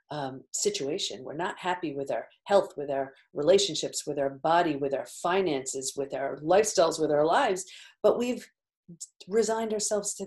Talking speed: 165 wpm